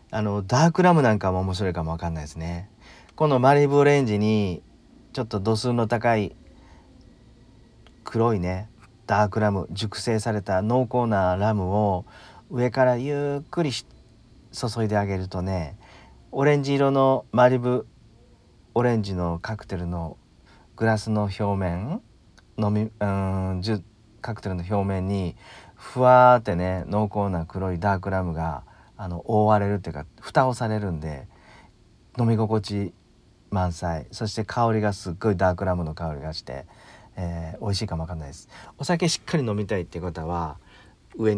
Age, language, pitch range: 40-59, Japanese, 90-115 Hz